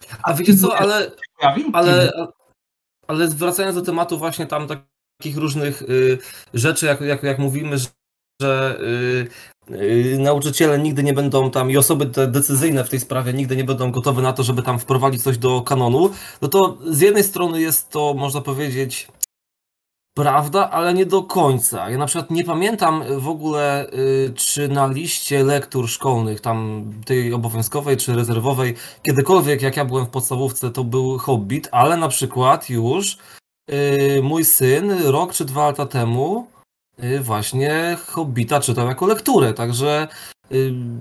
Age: 20-39